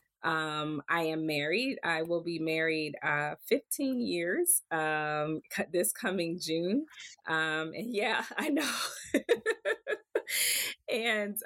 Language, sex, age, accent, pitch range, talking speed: English, female, 20-39, American, 165-215 Hz, 105 wpm